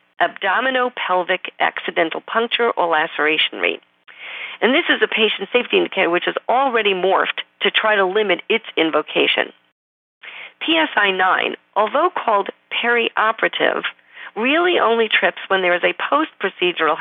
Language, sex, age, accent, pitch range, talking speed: English, female, 50-69, American, 175-245 Hz, 125 wpm